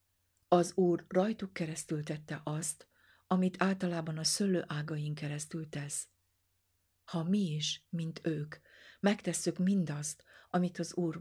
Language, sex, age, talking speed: Hungarian, female, 50-69, 125 wpm